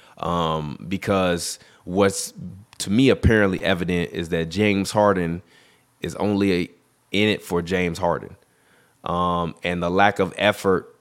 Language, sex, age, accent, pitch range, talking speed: English, male, 20-39, American, 85-100 Hz, 130 wpm